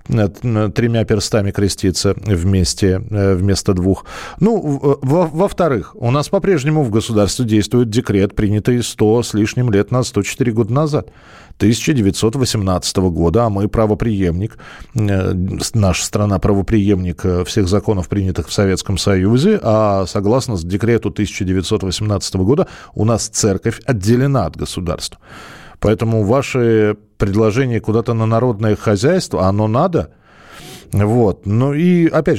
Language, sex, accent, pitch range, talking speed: Russian, male, native, 100-140 Hz, 115 wpm